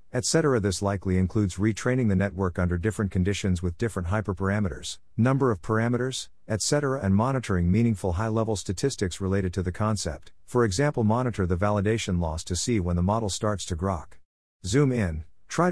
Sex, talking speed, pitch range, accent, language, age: male, 165 wpm, 90-115 Hz, American, English, 50-69